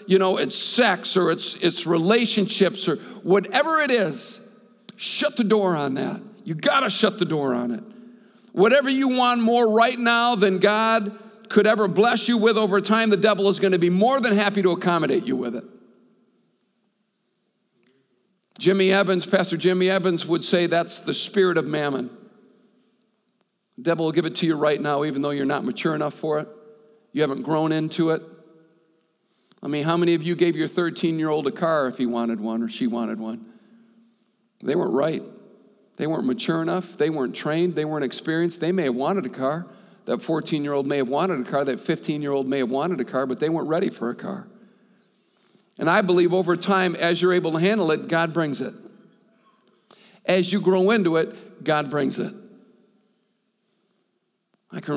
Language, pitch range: English, 155-215 Hz